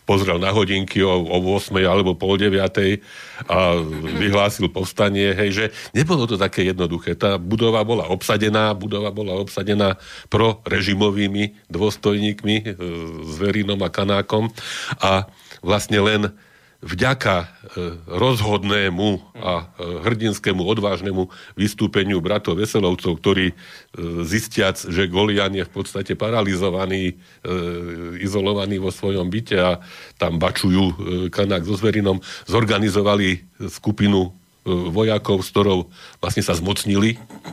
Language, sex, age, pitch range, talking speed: Slovak, male, 40-59, 95-105 Hz, 105 wpm